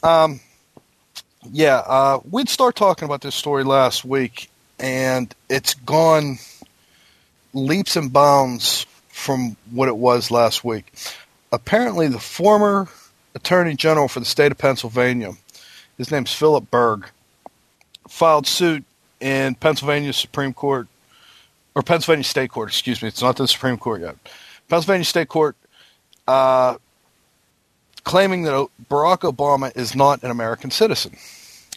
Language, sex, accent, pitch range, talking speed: English, male, American, 125-150 Hz, 130 wpm